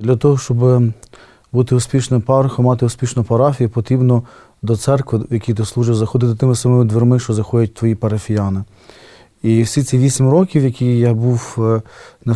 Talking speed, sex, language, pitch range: 160 wpm, male, Ukrainian, 115-125 Hz